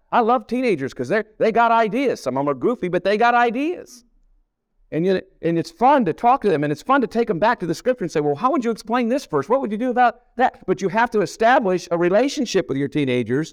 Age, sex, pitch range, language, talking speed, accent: 50-69, male, 150-235 Hz, English, 265 wpm, American